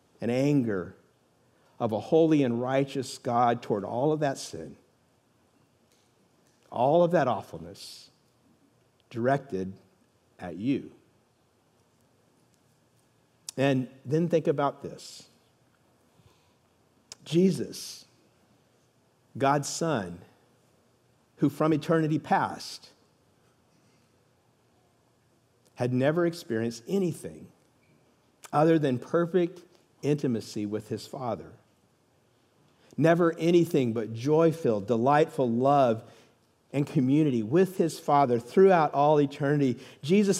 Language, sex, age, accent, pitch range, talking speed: English, male, 50-69, American, 125-160 Hz, 85 wpm